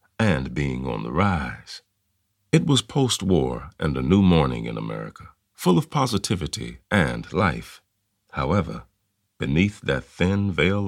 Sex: male